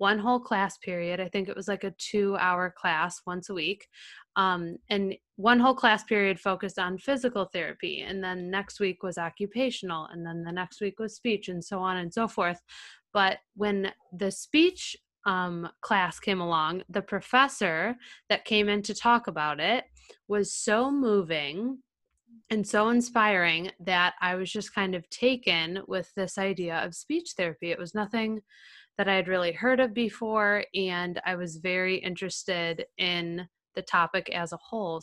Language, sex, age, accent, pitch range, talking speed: English, female, 20-39, American, 180-210 Hz, 175 wpm